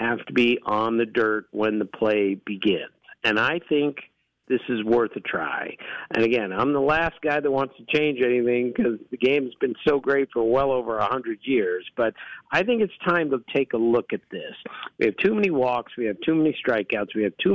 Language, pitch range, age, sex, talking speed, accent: English, 120-180 Hz, 50-69, male, 225 wpm, American